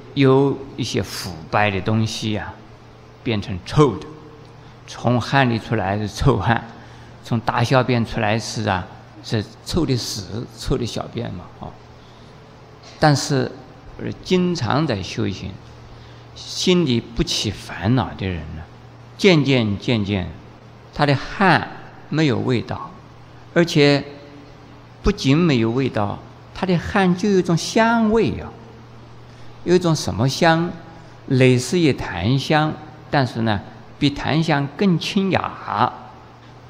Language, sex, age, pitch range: Chinese, male, 50-69, 110-150 Hz